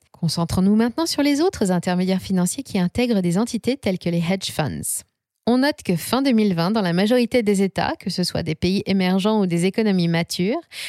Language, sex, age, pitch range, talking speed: French, female, 20-39, 175-225 Hz, 200 wpm